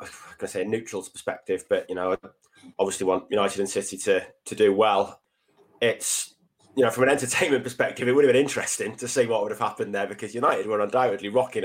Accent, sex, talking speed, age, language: British, male, 230 wpm, 20-39, English